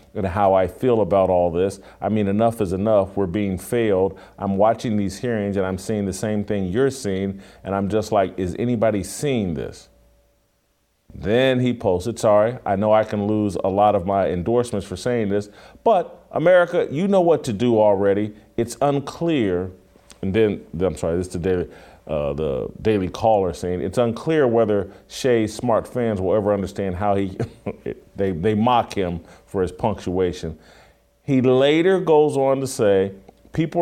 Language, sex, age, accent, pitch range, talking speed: English, male, 40-59, American, 95-120 Hz, 175 wpm